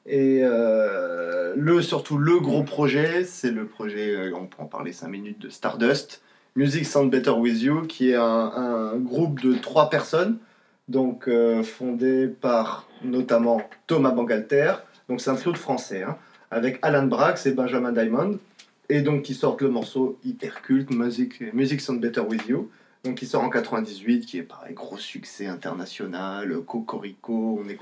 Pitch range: 125-165 Hz